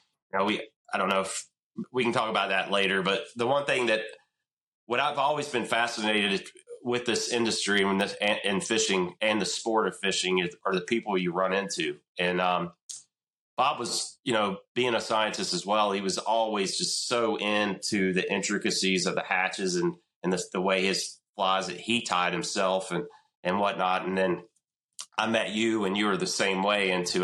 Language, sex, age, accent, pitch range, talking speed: English, male, 30-49, American, 95-110 Hz, 200 wpm